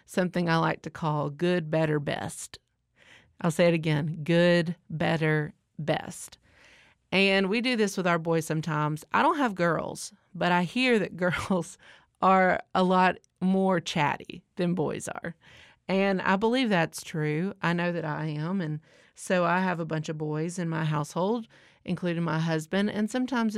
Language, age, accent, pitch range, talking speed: English, 40-59, American, 155-185 Hz, 170 wpm